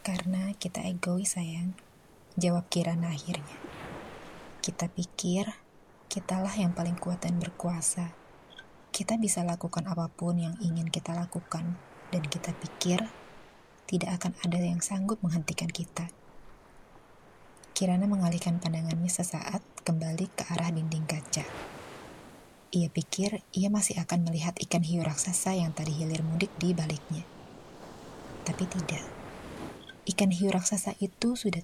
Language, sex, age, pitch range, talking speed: Indonesian, female, 20-39, 165-185 Hz, 120 wpm